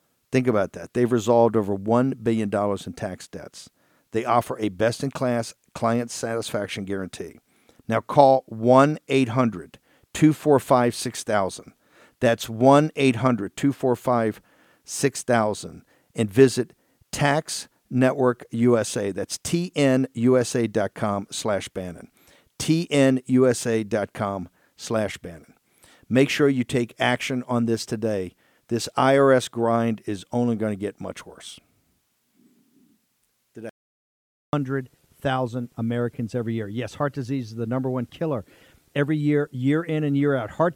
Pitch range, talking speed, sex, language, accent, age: 115-140 Hz, 110 wpm, male, English, American, 50-69